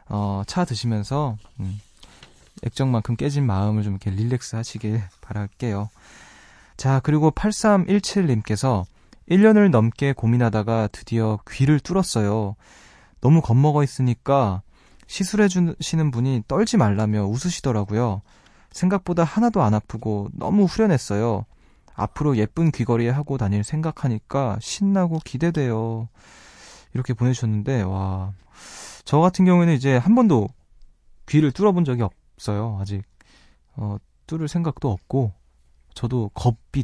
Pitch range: 105-140 Hz